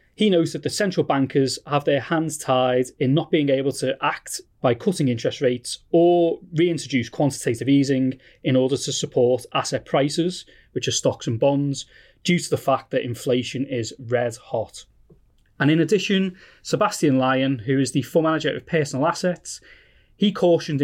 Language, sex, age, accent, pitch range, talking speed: English, male, 30-49, British, 130-165 Hz, 170 wpm